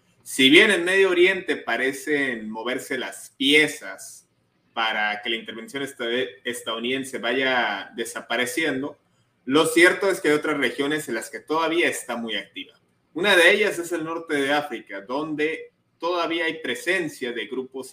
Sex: male